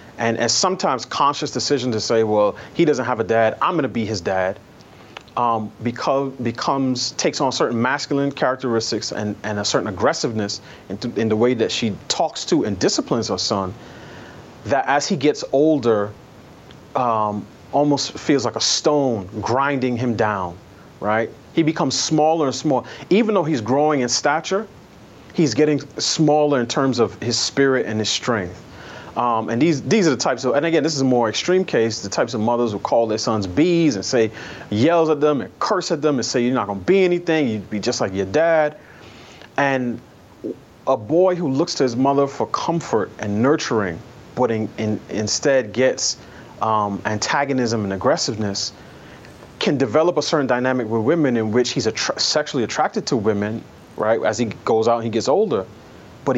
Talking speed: 185 wpm